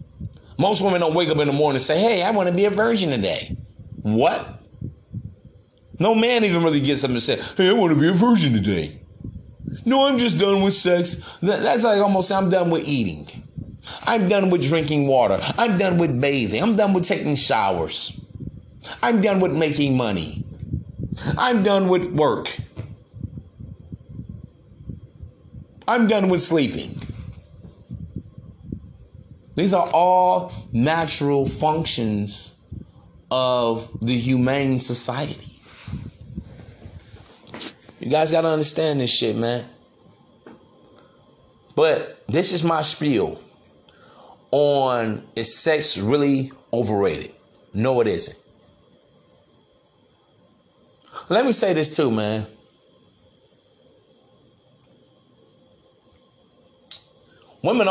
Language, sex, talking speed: English, male, 115 wpm